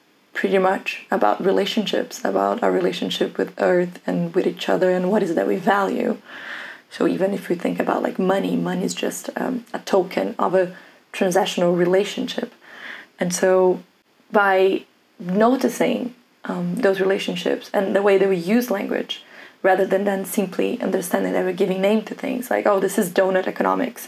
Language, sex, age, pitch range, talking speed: English, female, 20-39, 185-210 Hz, 170 wpm